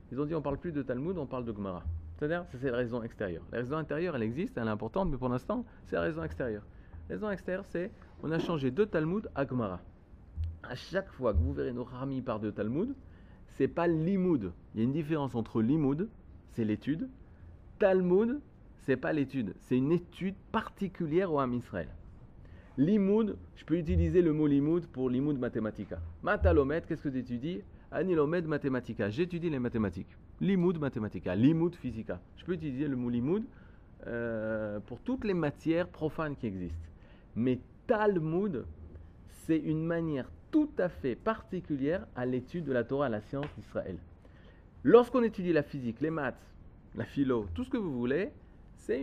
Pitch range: 105-170 Hz